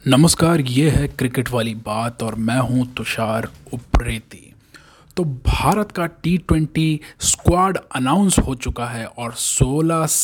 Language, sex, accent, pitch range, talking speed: Hindi, male, native, 125-160 Hz, 130 wpm